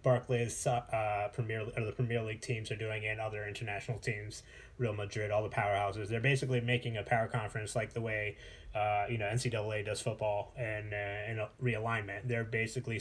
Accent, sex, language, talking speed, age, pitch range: American, male, English, 190 wpm, 20-39, 110-125 Hz